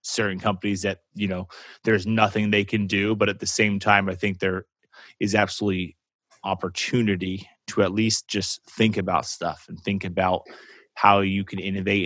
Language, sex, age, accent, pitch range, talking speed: English, male, 20-39, American, 95-110 Hz, 175 wpm